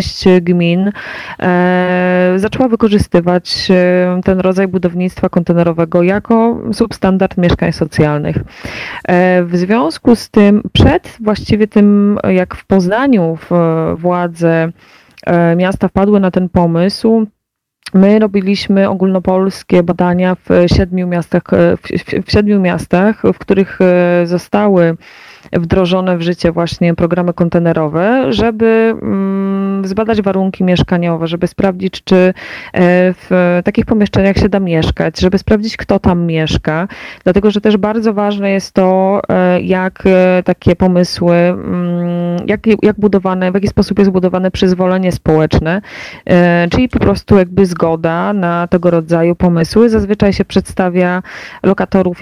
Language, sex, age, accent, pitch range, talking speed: Polish, female, 20-39, native, 175-200 Hz, 110 wpm